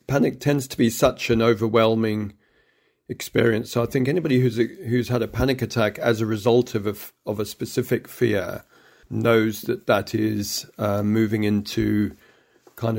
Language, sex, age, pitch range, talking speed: English, male, 40-59, 110-120 Hz, 165 wpm